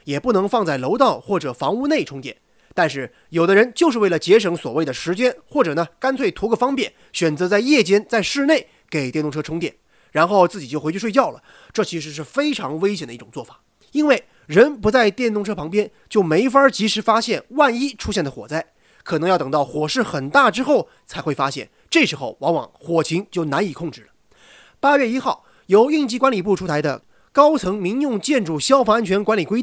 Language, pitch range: Chinese, 170-255 Hz